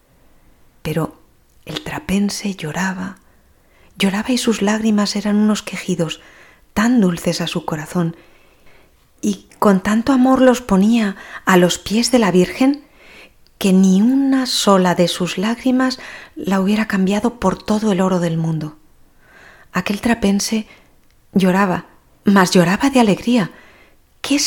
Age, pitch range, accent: 30-49, 175-215 Hz, Spanish